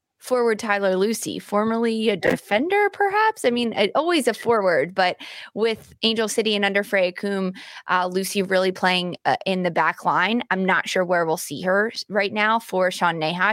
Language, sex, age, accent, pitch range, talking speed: English, female, 20-39, American, 175-215 Hz, 180 wpm